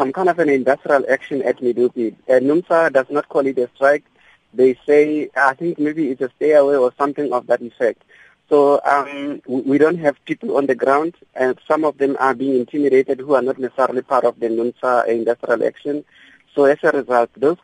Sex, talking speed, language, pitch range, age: male, 210 wpm, English, 125-145 Hz, 50-69